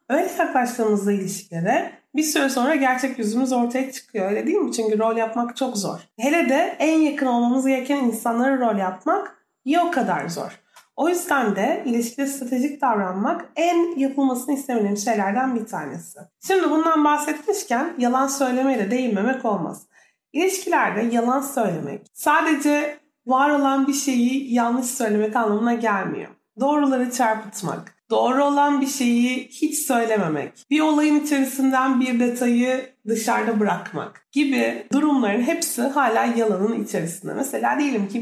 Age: 30-49